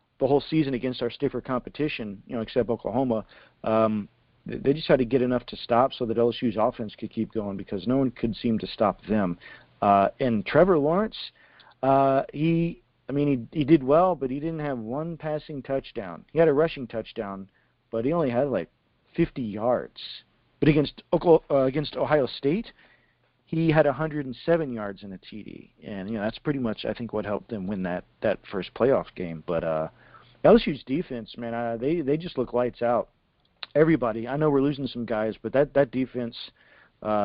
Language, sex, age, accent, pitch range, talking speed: English, male, 40-59, American, 115-150 Hz, 195 wpm